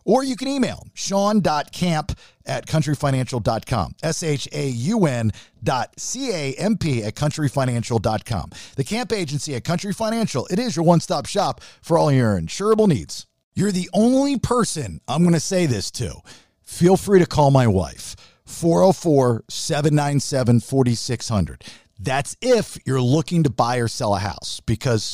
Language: English